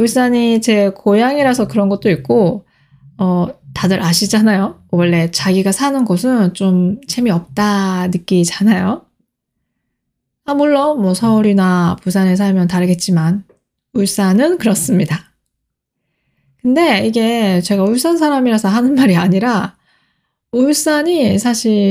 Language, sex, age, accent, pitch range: Korean, female, 20-39, native, 180-245 Hz